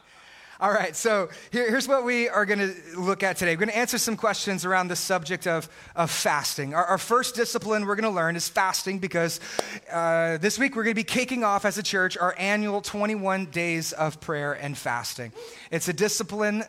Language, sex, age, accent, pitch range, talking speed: English, male, 30-49, American, 165-210 Hz, 195 wpm